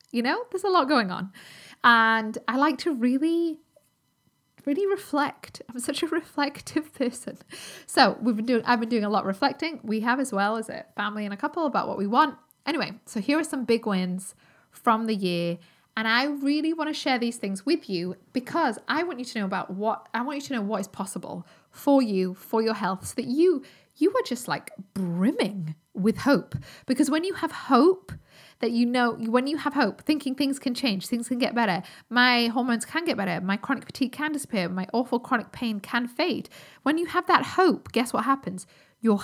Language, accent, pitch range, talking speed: English, British, 205-285 Hz, 215 wpm